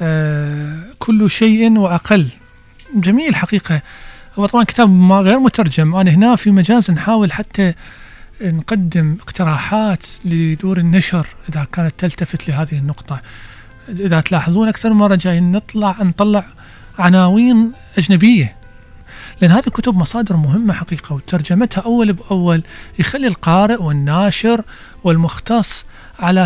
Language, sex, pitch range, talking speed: Arabic, male, 165-210 Hz, 110 wpm